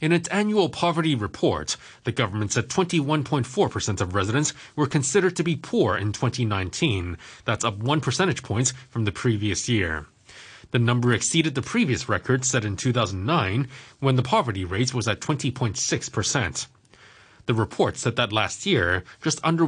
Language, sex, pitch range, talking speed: English, male, 105-145 Hz, 155 wpm